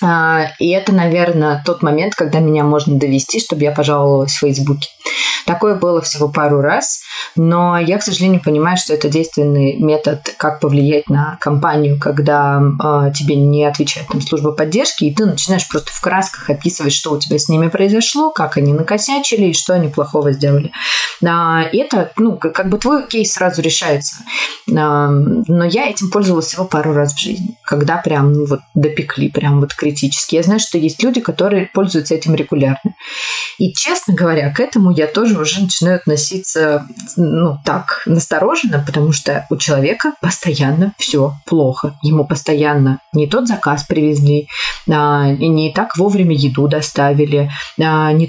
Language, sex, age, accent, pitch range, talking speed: Russian, female, 20-39, native, 145-190 Hz, 165 wpm